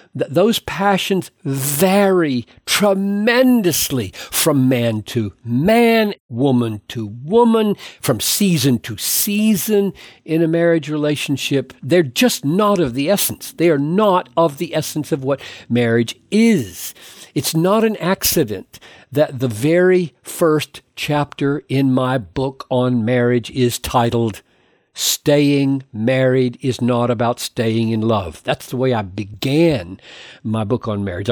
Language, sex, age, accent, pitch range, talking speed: English, male, 60-79, American, 120-170 Hz, 130 wpm